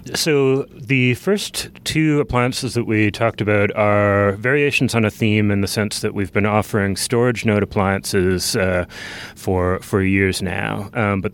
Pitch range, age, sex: 95-115 Hz, 30-49, male